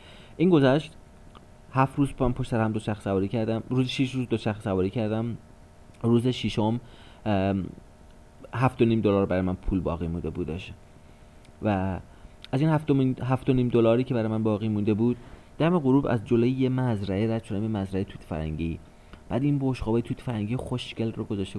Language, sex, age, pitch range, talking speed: Persian, male, 30-49, 90-115 Hz, 175 wpm